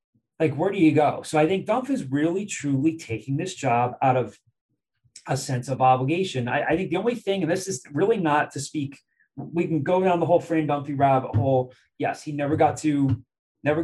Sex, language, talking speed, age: male, English, 215 wpm, 20-39